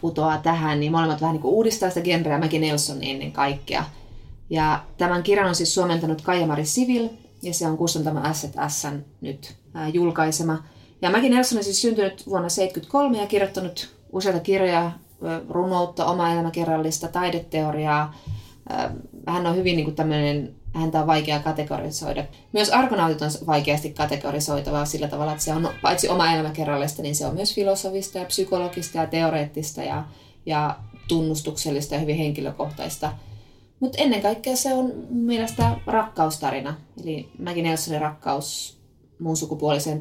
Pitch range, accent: 150-180 Hz, native